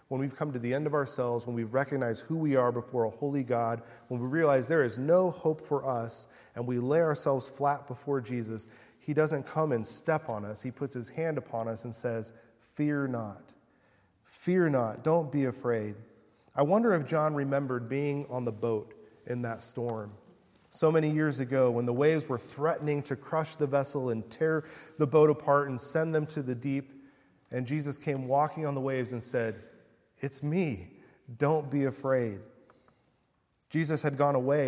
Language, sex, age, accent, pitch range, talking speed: English, male, 40-59, American, 120-150 Hz, 190 wpm